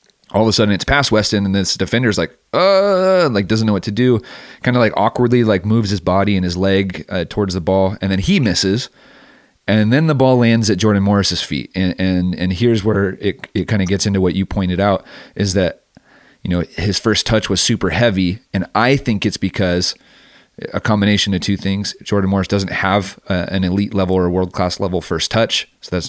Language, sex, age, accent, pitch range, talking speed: English, male, 30-49, American, 90-105 Hz, 225 wpm